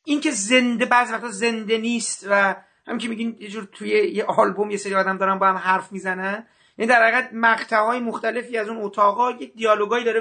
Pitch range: 200-250 Hz